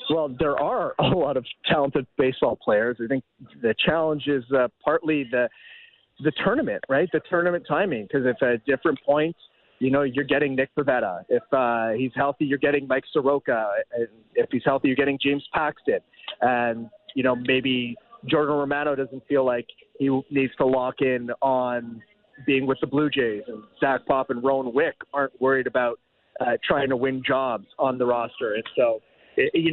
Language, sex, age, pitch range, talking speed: English, male, 30-49, 130-160 Hz, 180 wpm